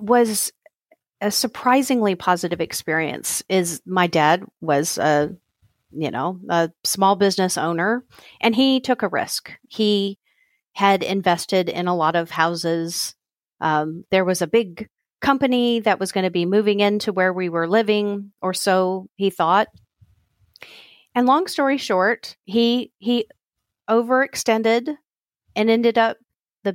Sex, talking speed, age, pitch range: female, 135 wpm, 40-59, 175-230 Hz